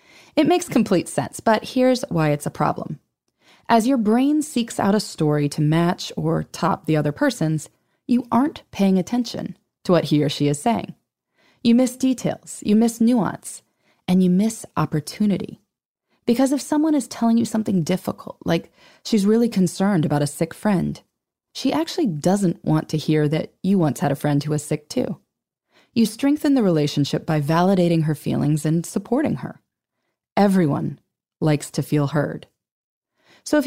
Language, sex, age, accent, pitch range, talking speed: English, female, 20-39, American, 155-235 Hz, 170 wpm